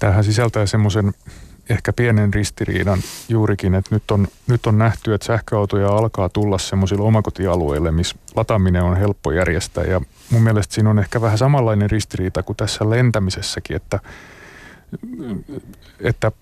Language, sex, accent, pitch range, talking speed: Finnish, male, native, 100-115 Hz, 140 wpm